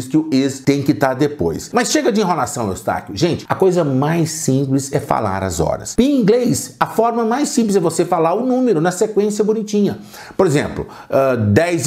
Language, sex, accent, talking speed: Portuguese, male, Brazilian, 200 wpm